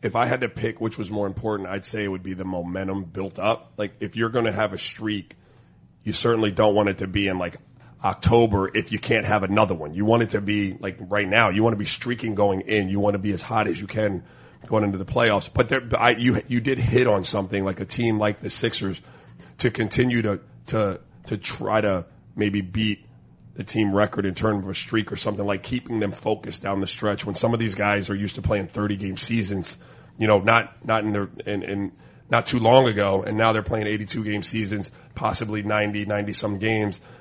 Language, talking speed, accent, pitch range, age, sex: English, 235 wpm, American, 100-115 Hz, 30-49, male